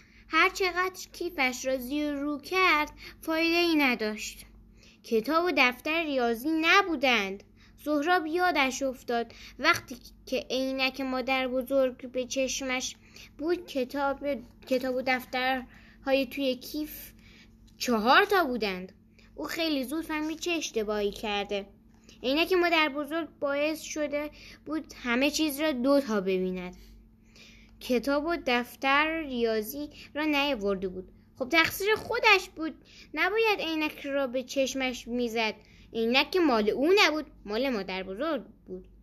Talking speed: 115 wpm